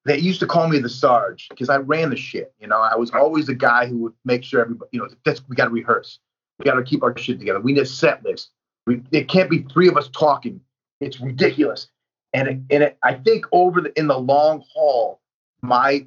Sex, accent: male, American